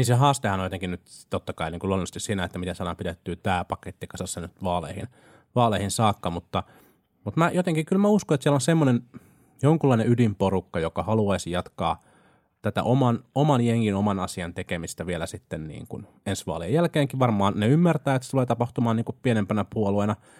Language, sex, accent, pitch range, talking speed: Finnish, male, native, 95-125 Hz, 180 wpm